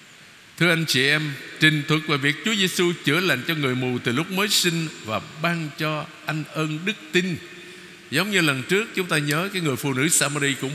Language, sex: Vietnamese, male